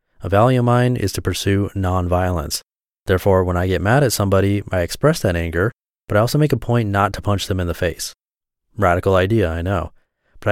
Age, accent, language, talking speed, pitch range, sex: 30-49, American, English, 210 wpm, 95-110 Hz, male